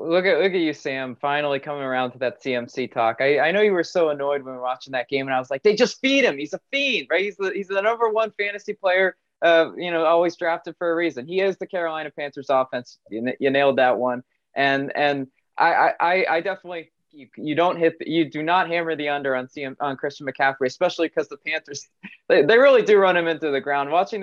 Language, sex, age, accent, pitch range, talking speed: English, male, 20-39, American, 140-190 Hz, 250 wpm